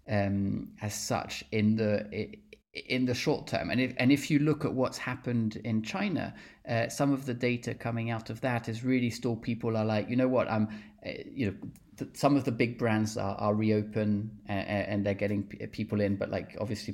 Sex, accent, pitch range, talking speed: male, British, 110-135 Hz, 215 wpm